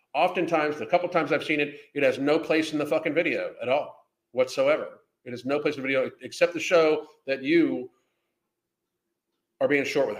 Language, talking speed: English, 200 wpm